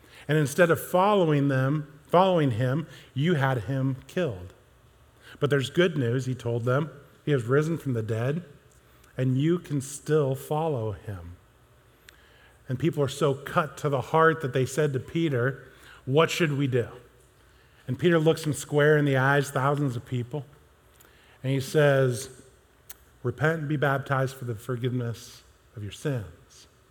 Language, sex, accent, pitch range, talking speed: English, male, American, 125-150 Hz, 155 wpm